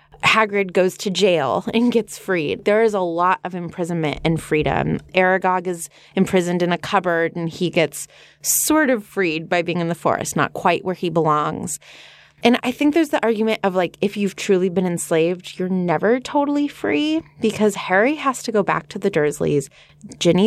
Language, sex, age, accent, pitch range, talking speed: English, female, 20-39, American, 165-215 Hz, 190 wpm